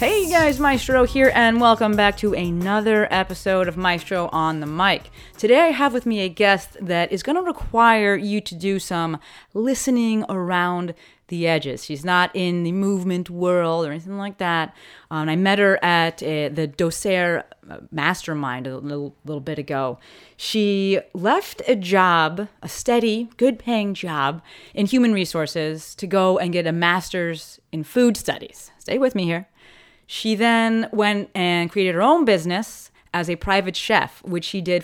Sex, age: female, 30-49